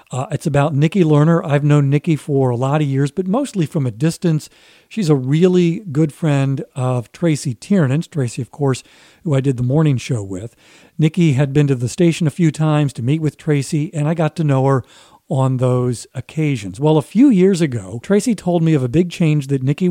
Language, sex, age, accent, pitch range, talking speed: English, male, 50-69, American, 135-165 Hz, 215 wpm